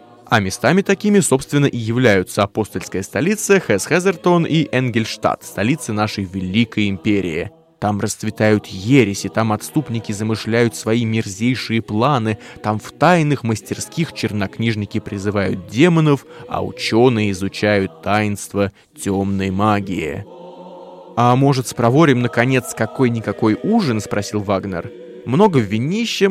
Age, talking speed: 20-39, 115 wpm